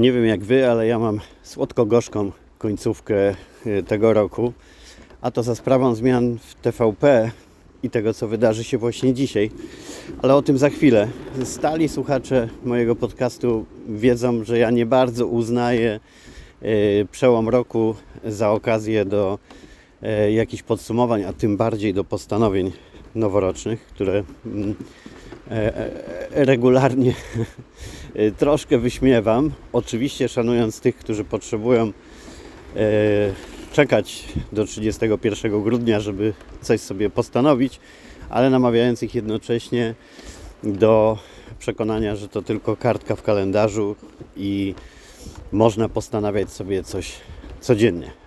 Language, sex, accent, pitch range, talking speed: Polish, male, native, 105-120 Hz, 110 wpm